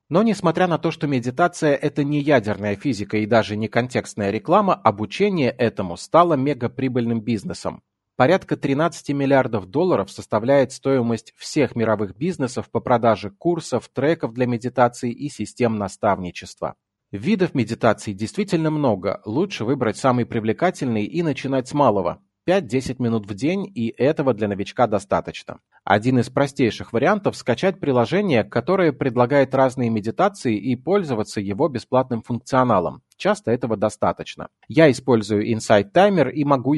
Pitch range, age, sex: 110-150 Hz, 30-49, male